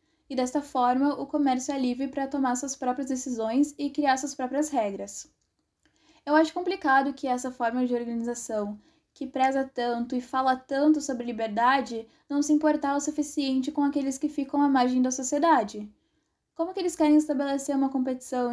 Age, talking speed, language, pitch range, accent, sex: 10-29, 170 wpm, Portuguese, 240-290 Hz, Brazilian, female